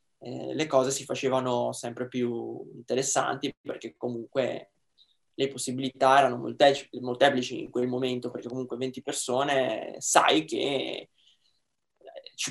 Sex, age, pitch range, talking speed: male, 20-39, 125-150 Hz, 110 wpm